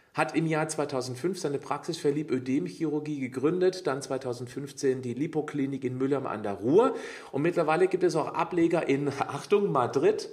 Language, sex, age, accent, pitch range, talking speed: German, male, 40-59, German, 145-185 Hz, 155 wpm